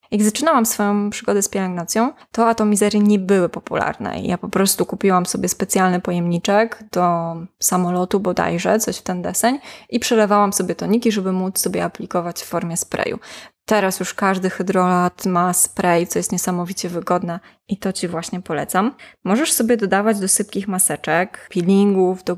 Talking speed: 160 wpm